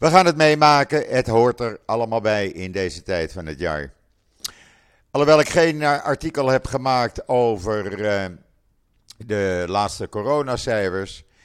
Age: 50-69